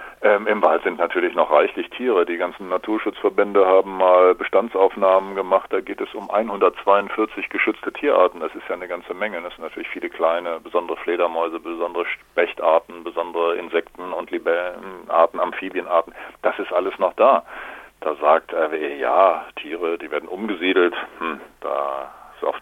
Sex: male